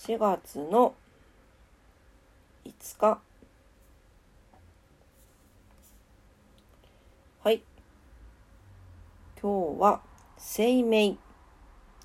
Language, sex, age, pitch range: Japanese, female, 40-59, 145-225 Hz